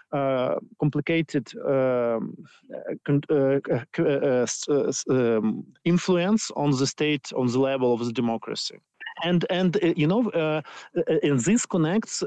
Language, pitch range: Danish, 135-170 Hz